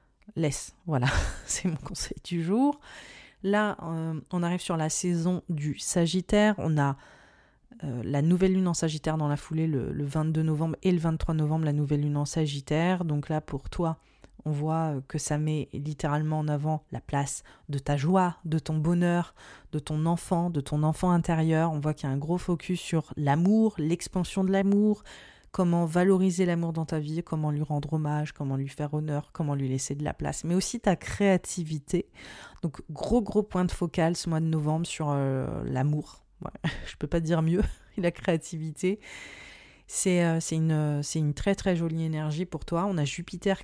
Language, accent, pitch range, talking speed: French, French, 150-185 Hz, 195 wpm